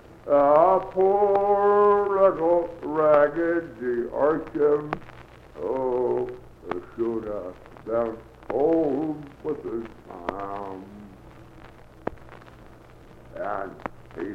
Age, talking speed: 60-79, 70 wpm